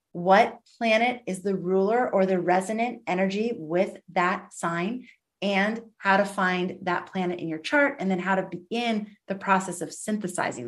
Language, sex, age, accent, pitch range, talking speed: English, female, 30-49, American, 180-225 Hz, 170 wpm